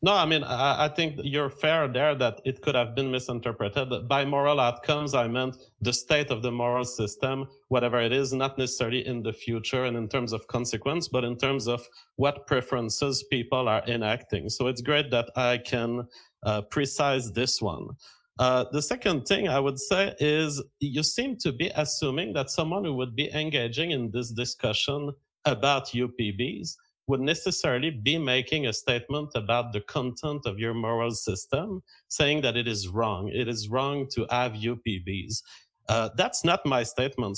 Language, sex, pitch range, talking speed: English, male, 120-145 Hz, 175 wpm